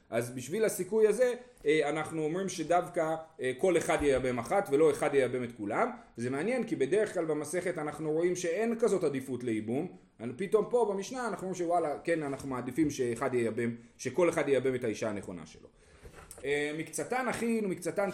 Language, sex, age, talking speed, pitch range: Hebrew, male, 30-49, 160 wpm, 135-205 Hz